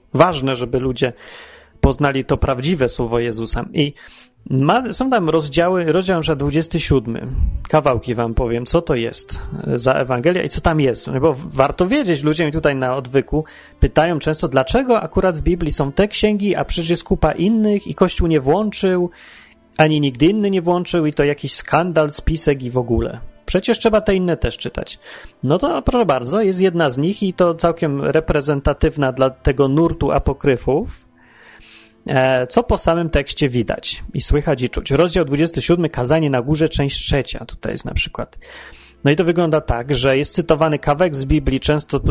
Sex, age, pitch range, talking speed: male, 30-49, 130-170 Hz, 170 wpm